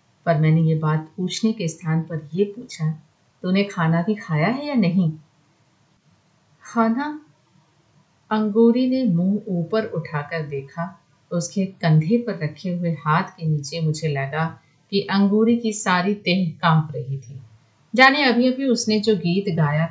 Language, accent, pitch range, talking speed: Hindi, native, 155-225 Hz, 100 wpm